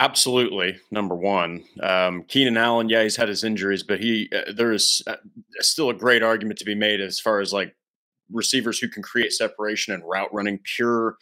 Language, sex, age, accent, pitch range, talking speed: English, male, 30-49, American, 100-125 Hz, 200 wpm